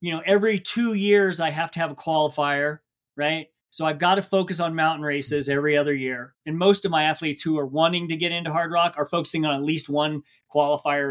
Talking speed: 230 wpm